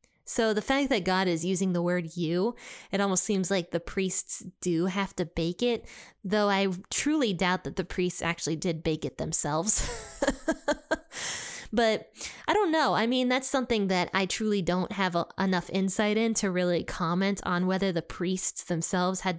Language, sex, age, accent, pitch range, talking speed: English, female, 20-39, American, 175-220 Hz, 180 wpm